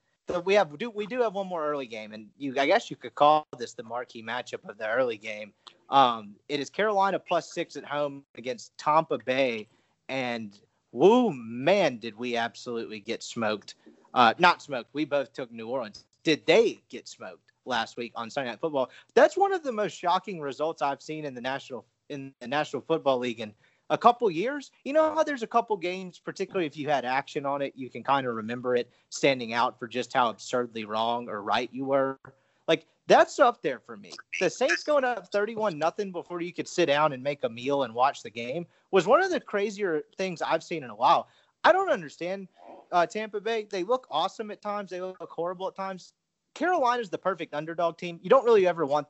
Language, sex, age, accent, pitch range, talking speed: English, male, 30-49, American, 125-195 Hz, 215 wpm